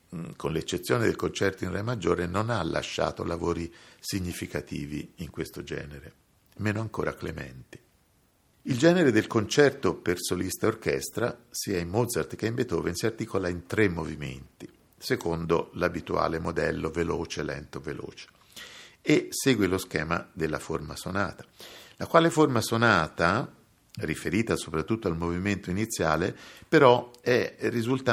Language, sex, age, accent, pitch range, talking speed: Italian, male, 50-69, native, 85-115 Hz, 125 wpm